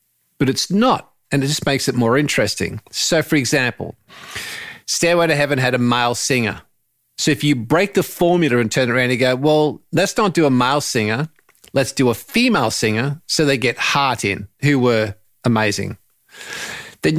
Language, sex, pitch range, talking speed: English, male, 125-160 Hz, 185 wpm